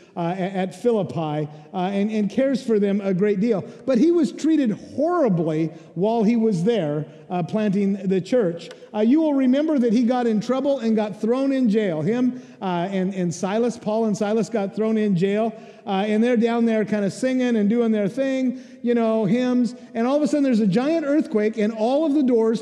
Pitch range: 195-245 Hz